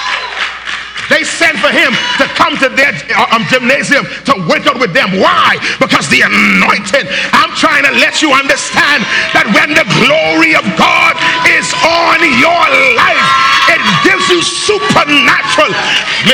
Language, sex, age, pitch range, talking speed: English, male, 40-59, 240-310 Hz, 145 wpm